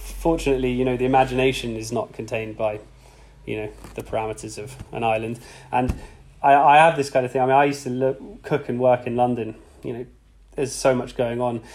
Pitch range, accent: 115-135 Hz, British